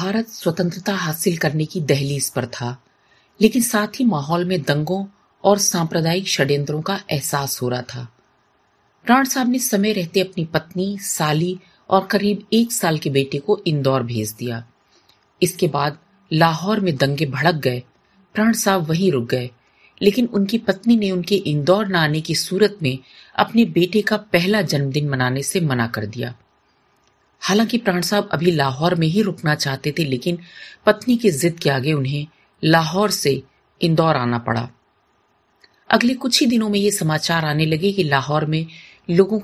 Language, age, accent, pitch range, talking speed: Hindi, 40-59, native, 145-200 Hz, 115 wpm